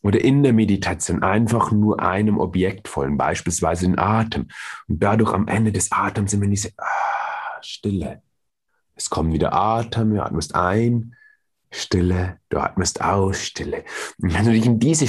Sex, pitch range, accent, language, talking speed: male, 95-120 Hz, German, German, 165 wpm